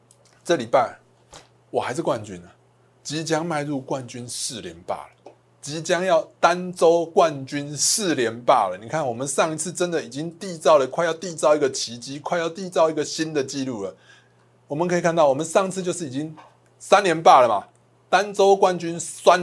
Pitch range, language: 140-195 Hz, Chinese